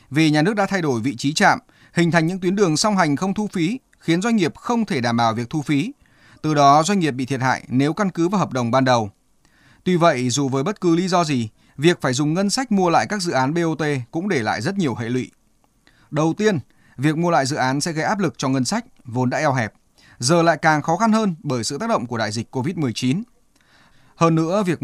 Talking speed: 255 wpm